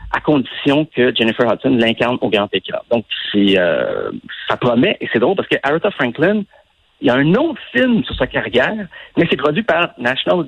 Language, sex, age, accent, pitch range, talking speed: French, male, 50-69, French, 115-165 Hz, 200 wpm